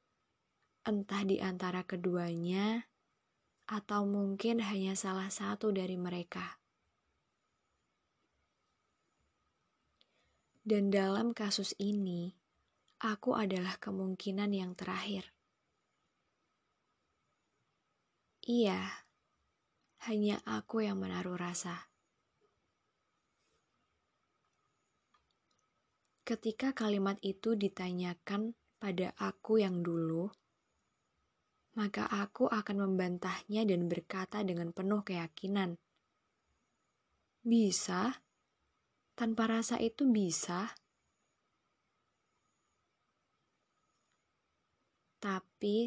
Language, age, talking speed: Indonesian, 20-39, 65 wpm